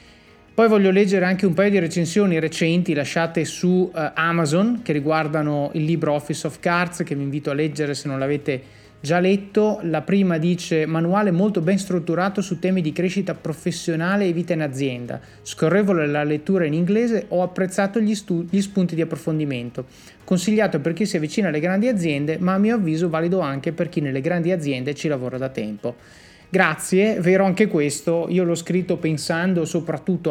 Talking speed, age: 175 wpm, 30-49